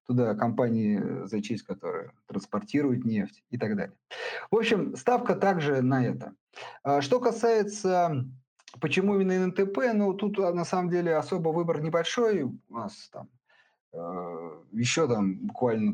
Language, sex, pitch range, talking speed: Russian, male, 115-170 Hz, 130 wpm